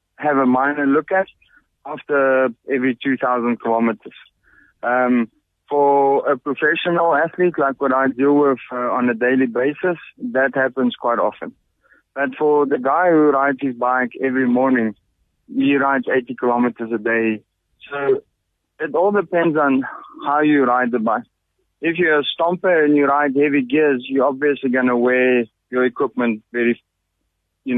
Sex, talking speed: male, 155 wpm